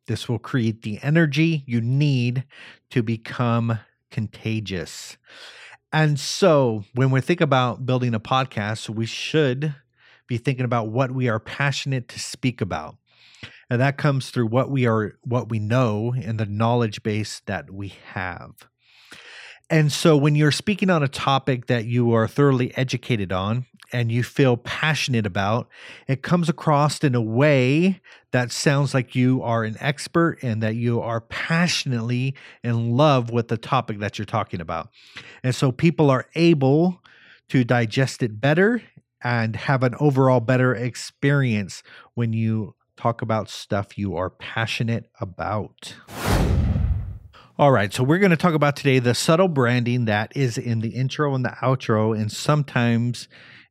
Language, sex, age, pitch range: English, male, 30-49, 115-140 Hz